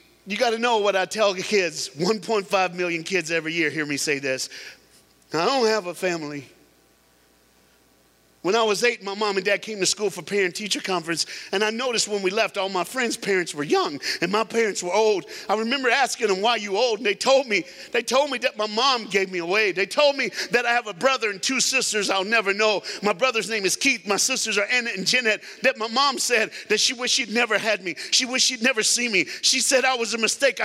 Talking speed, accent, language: 240 wpm, American, English